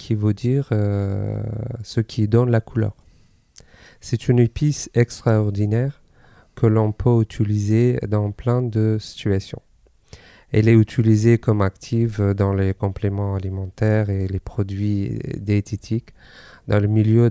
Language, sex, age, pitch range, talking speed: French, male, 40-59, 105-120 Hz, 130 wpm